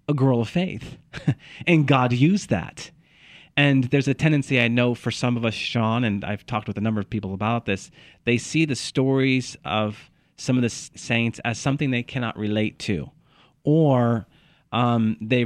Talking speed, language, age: 185 wpm, English, 40-59